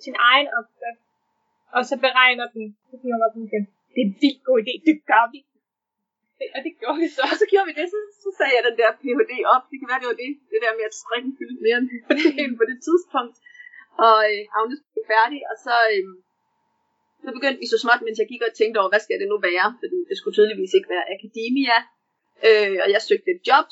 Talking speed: 230 wpm